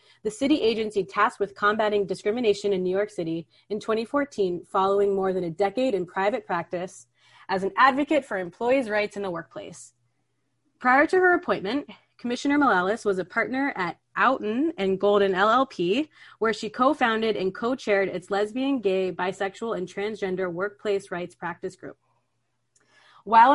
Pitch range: 190-240 Hz